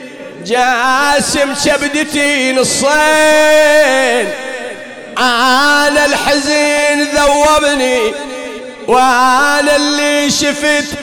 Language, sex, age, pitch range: English, male, 40-59, 255-300 Hz